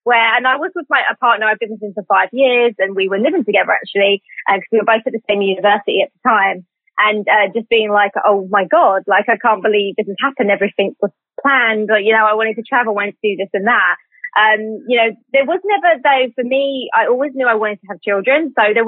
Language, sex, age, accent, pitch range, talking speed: English, female, 20-39, British, 200-250 Hz, 260 wpm